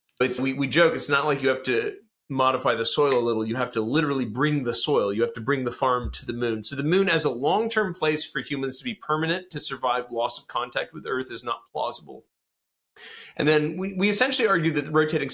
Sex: male